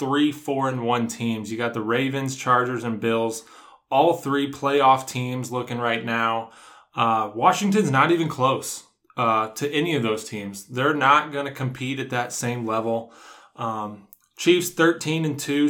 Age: 20-39